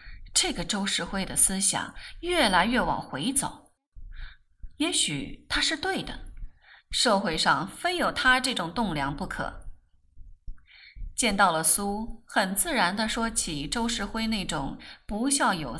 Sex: female